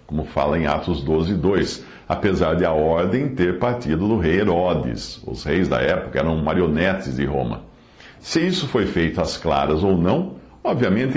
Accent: Brazilian